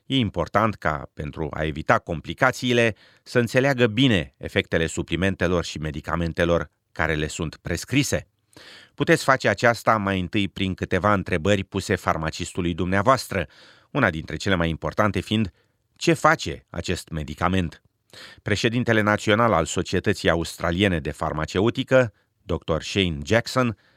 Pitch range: 85-115 Hz